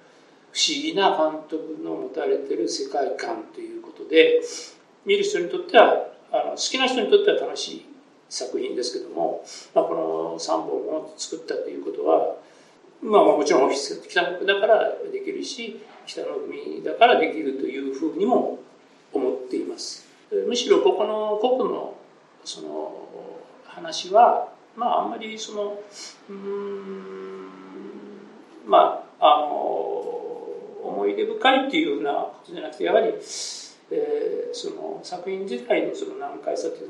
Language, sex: Japanese, male